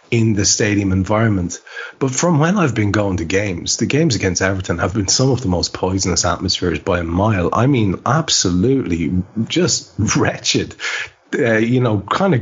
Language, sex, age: English, male, 30-49